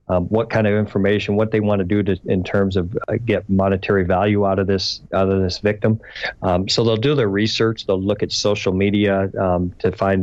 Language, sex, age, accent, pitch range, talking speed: English, male, 40-59, American, 95-115 Hz, 230 wpm